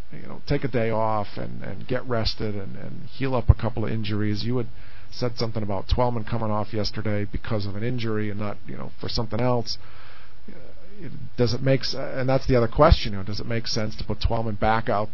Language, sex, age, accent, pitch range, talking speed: English, male, 50-69, American, 105-120 Hz, 230 wpm